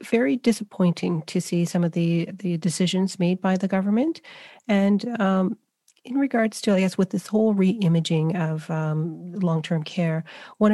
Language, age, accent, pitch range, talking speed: English, 30-49, American, 170-195 Hz, 160 wpm